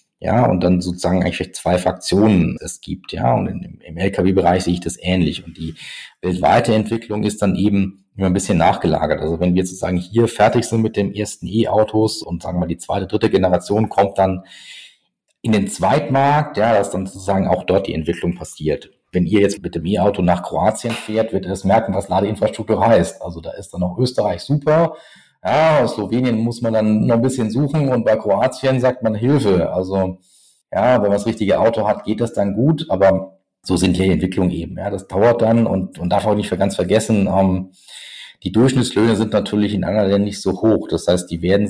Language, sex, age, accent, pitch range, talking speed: German, male, 40-59, German, 95-115 Hz, 210 wpm